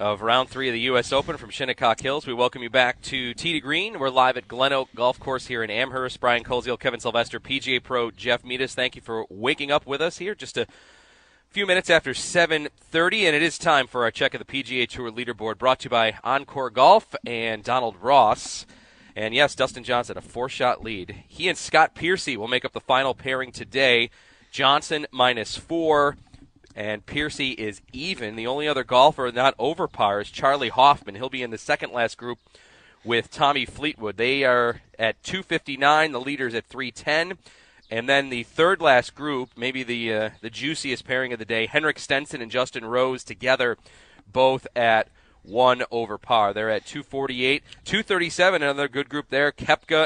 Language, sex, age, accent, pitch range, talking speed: English, male, 30-49, American, 120-140 Hz, 190 wpm